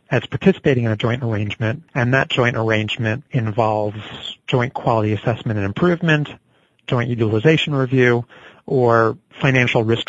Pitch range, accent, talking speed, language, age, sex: 110-135 Hz, American, 130 wpm, English, 40-59, male